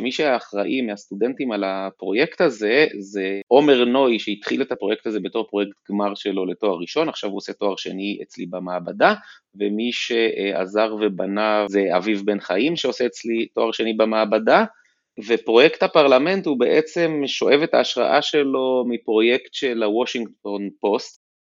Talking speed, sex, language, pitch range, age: 140 wpm, male, Hebrew, 100-135 Hz, 30-49